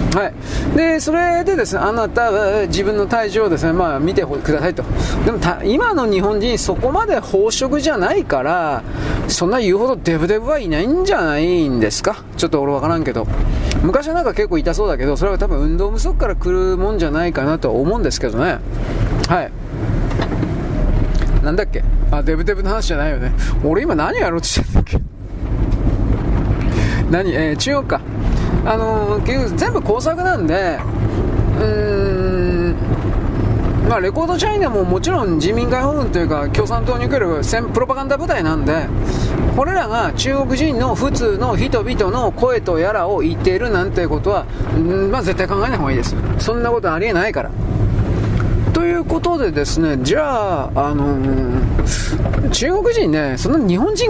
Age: 40-59